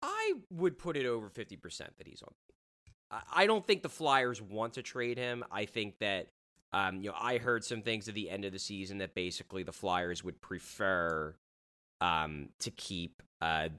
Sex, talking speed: male, 190 wpm